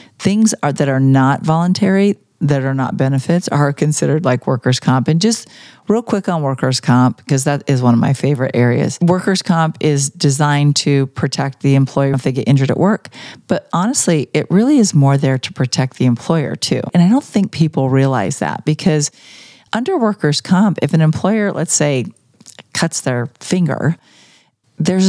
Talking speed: 180 wpm